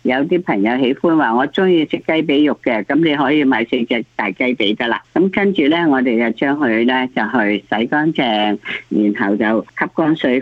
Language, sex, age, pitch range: Chinese, female, 50-69, 115-155 Hz